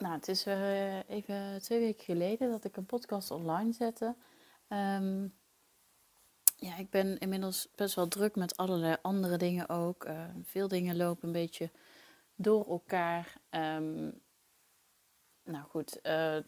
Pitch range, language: 160-190 Hz, Dutch